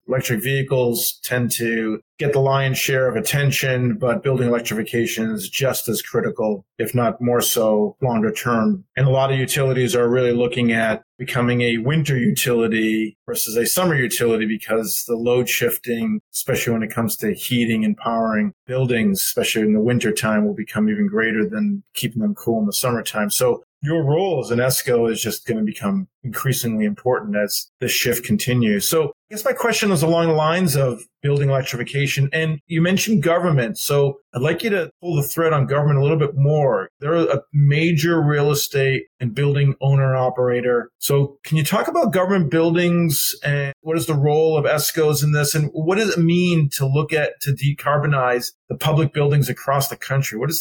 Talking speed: 190 wpm